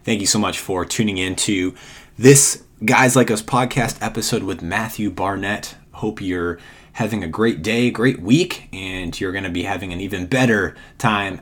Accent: American